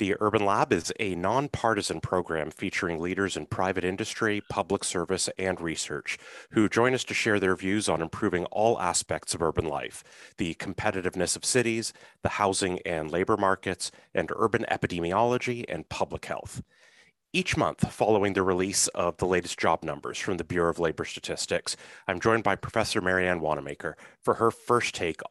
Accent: American